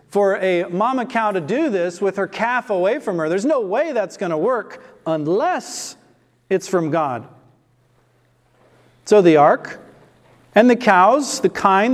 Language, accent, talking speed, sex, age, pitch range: English, American, 160 wpm, male, 40-59, 170-215 Hz